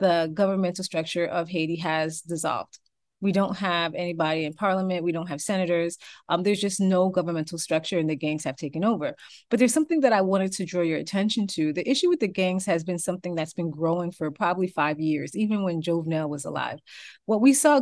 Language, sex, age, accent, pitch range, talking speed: English, female, 30-49, American, 165-205 Hz, 210 wpm